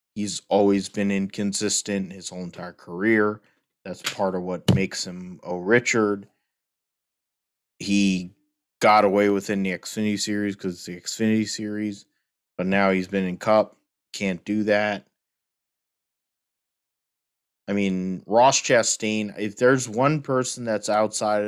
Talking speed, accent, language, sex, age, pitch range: 130 wpm, American, English, male, 20-39, 95-115 Hz